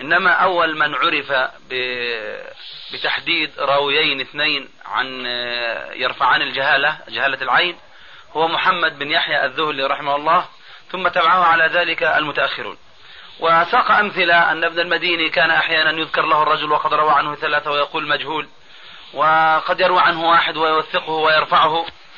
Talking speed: 125 wpm